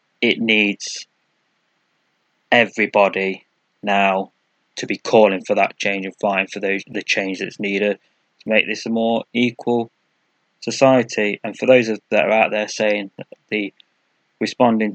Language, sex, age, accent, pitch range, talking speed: English, male, 20-39, British, 100-115 Hz, 150 wpm